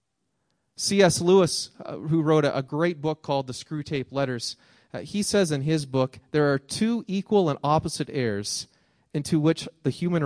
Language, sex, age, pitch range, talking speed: English, male, 30-49, 120-160 Hz, 175 wpm